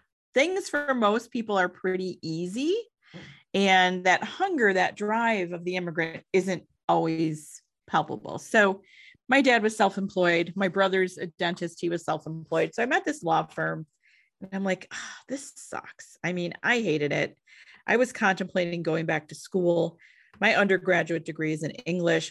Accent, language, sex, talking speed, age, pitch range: American, English, female, 160 wpm, 40-59, 175-245 Hz